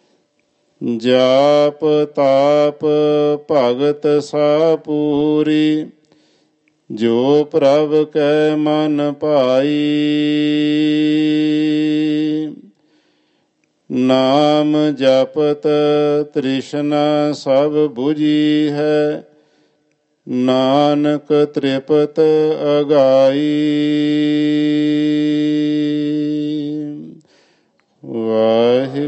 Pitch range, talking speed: 115-150 Hz, 40 wpm